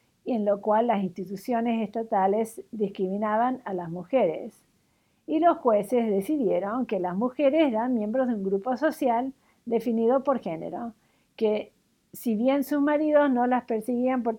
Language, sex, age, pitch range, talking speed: English, female, 50-69, 200-260 Hz, 150 wpm